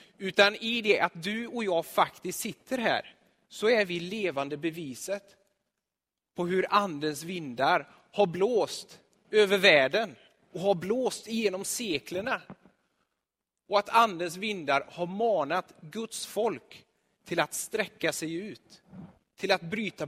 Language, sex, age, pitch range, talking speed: Swedish, male, 30-49, 150-195 Hz, 130 wpm